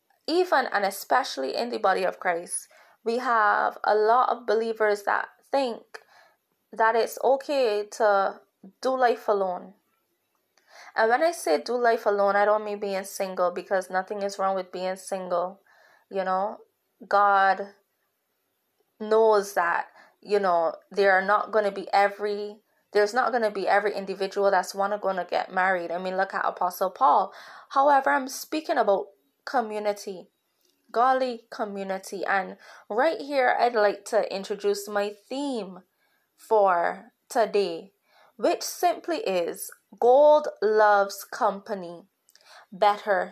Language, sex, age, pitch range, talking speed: English, female, 20-39, 195-235 Hz, 135 wpm